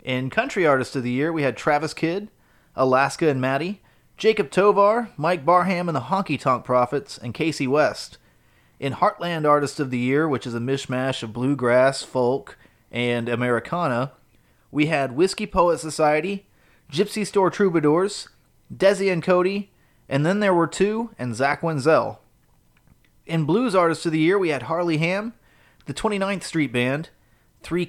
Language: English